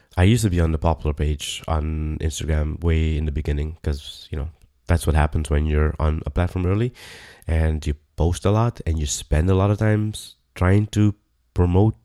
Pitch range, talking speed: 80-105 Hz, 205 wpm